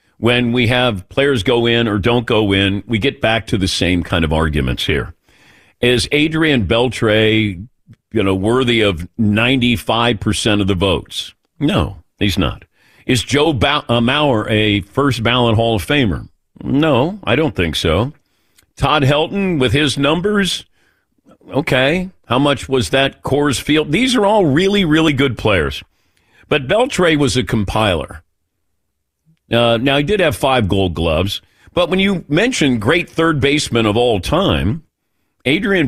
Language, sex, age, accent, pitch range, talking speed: English, male, 50-69, American, 105-145 Hz, 150 wpm